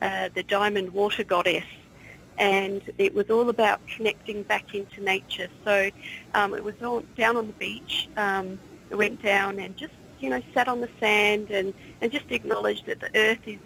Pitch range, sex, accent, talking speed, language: 195-225 Hz, female, Australian, 190 wpm, English